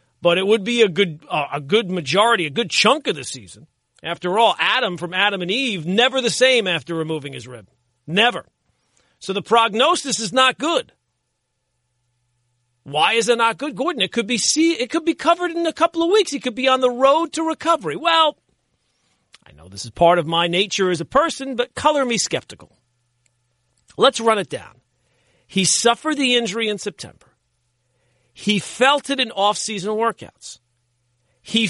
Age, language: 50-69, English